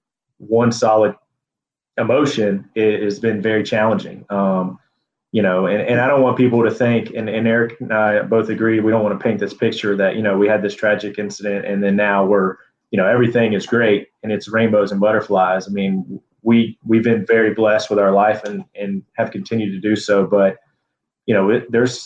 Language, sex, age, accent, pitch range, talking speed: English, male, 20-39, American, 100-115 Hz, 210 wpm